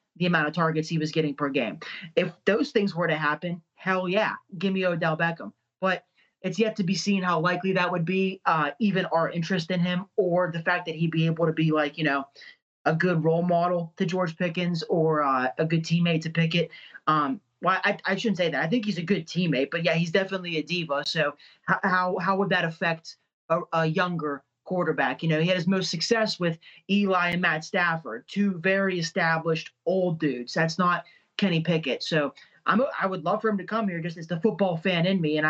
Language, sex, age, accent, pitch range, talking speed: English, male, 30-49, American, 160-190 Hz, 225 wpm